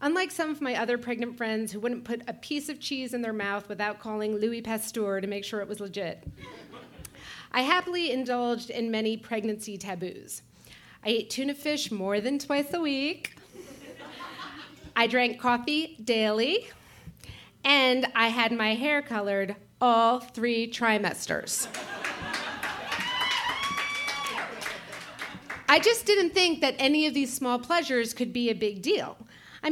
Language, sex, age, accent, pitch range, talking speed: English, female, 30-49, American, 220-290 Hz, 145 wpm